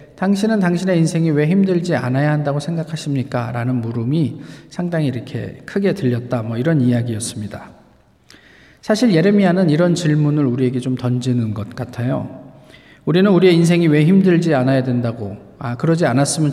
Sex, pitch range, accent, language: male, 125-185 Hz, native, Korean